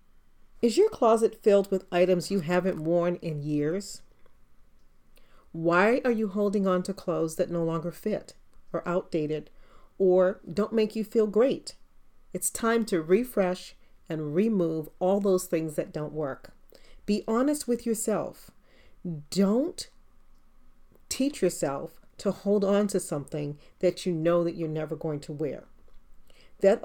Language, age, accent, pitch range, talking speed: English, 40-59, American, 155-205 Hz, 145 wpm